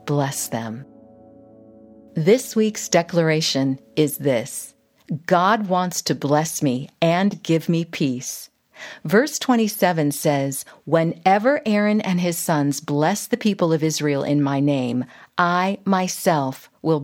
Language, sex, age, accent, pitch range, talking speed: English, female, 50-69, American, 155-215 Hz, 125 wpm